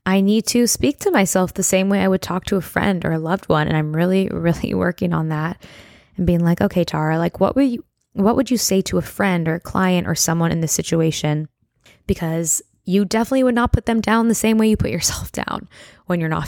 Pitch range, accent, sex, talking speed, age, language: 165-205 Hz, American, female, 250 wpm, 20-39, English